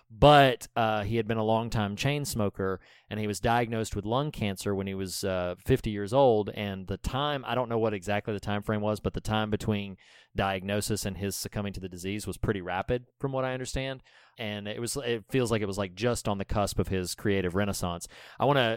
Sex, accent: male, American